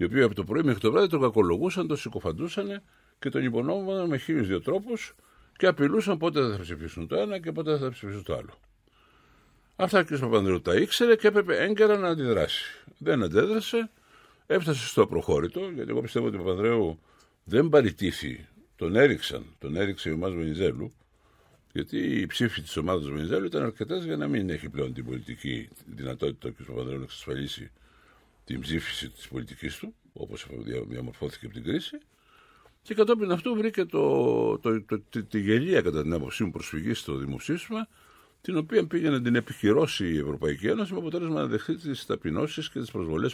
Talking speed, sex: 175 wpm, male